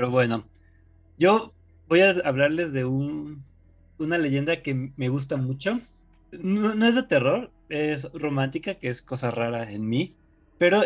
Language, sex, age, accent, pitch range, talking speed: Spanish, male, 20-39, Mexican, 125-165 Hz, 155 wpm